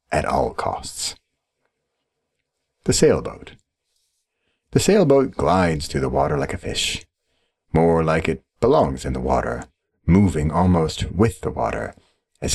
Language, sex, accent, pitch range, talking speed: English, male, American, 75-90 Hz, 130 wpm